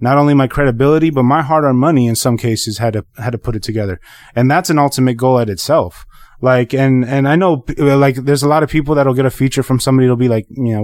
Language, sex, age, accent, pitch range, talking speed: English, male, 20-39, American, 120-140 Hz, 265 wpm